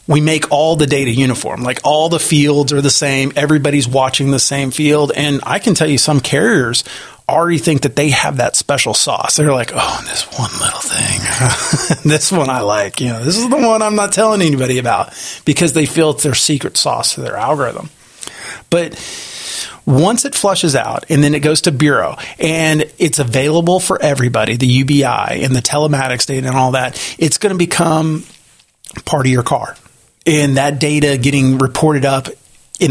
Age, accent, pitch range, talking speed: 30-49, American, 135-155 Hz, 190 wpm